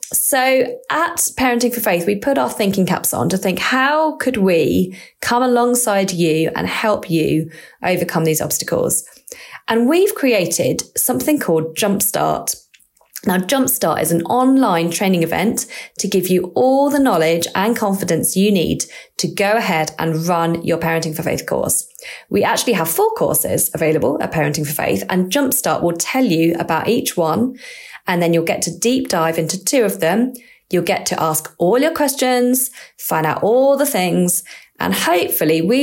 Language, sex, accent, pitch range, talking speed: English, female, British, 170-245 Hz, 170 wpm